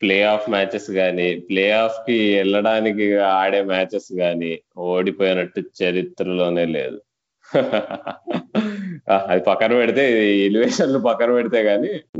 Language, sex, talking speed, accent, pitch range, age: Telugu, male, 105 wpm, native, 100-140 Hz, 20-39